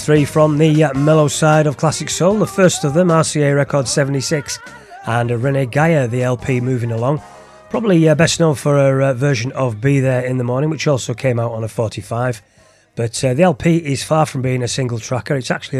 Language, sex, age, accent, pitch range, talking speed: English, male, 30-49, British, 120-145 Hz, 215 wpm